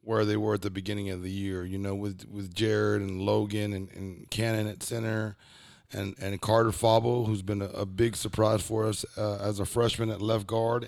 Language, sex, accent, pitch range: English, male, American, 95-110 Hz